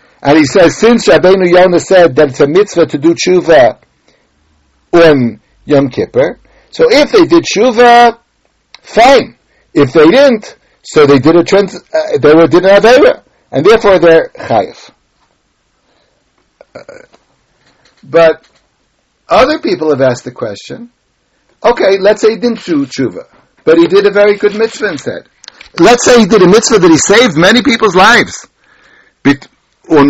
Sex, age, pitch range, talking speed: male, 60-79, 155-220 Hz, 155 wpm